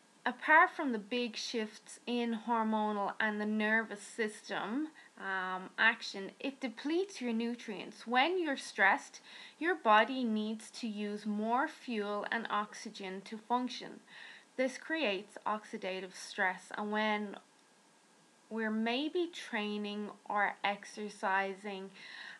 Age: 20-39